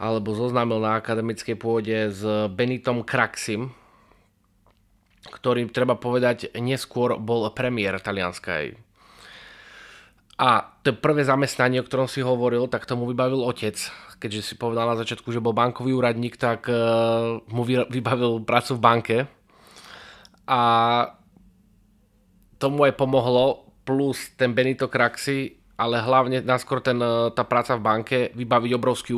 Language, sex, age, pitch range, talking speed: English, male, 20-39, 110-125 Hz, 125 wpm